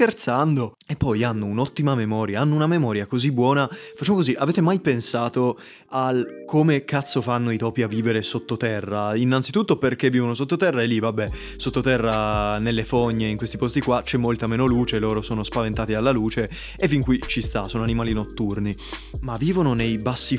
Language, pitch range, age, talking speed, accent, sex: Italian, 115-135 Hz, 20-39, 175 wpm, native, male